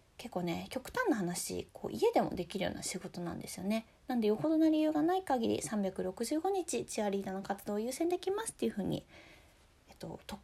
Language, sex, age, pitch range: Japanese, female, 20-39, 190-260 Hz